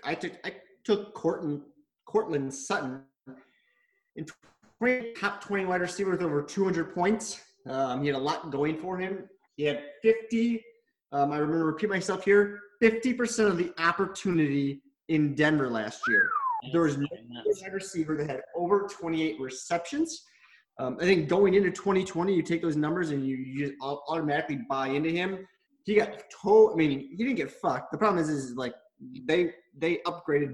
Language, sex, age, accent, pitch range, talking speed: English, male, 20-39, American, 145-205 Hz, 170 wpm